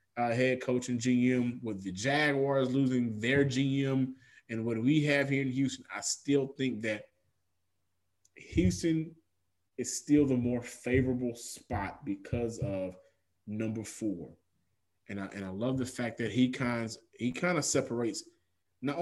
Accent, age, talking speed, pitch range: American, 20-39, 150 wpm, 110-140 Hz